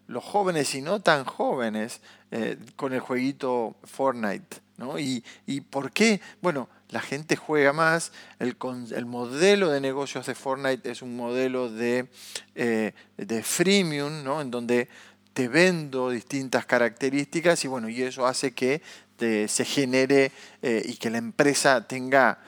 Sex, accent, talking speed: male, Argentinian, 135 wpm